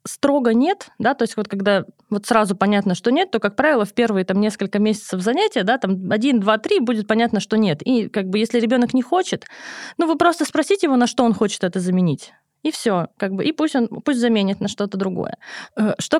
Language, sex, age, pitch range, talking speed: Russian, female, 20-39, 205-260 Hz, 225 wpm